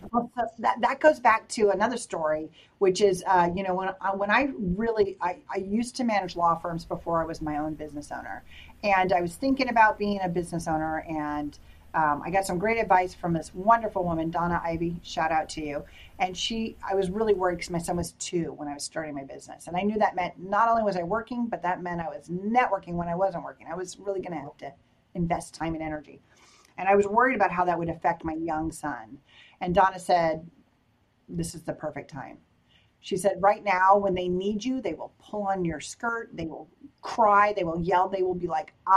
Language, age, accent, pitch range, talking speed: English, 40-59, American, 165-205 Hz, 235 wpm